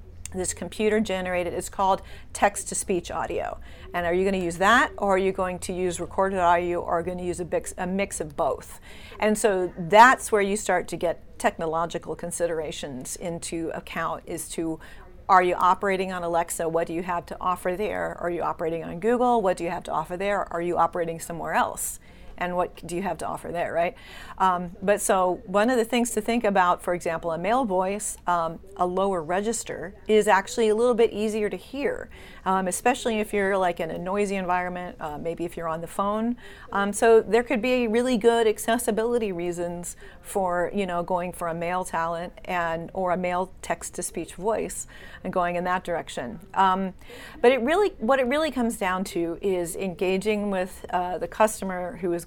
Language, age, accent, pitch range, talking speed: English, 40-59, American, 175-210 Hz, 200 wpm